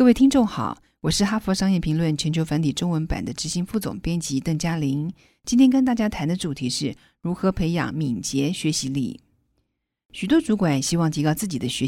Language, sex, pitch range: Chinese, female, 140-195 Hz